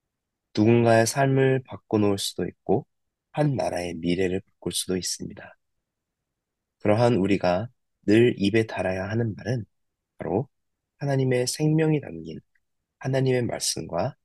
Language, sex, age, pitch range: Korean, male, 30-49, 90-120 Hz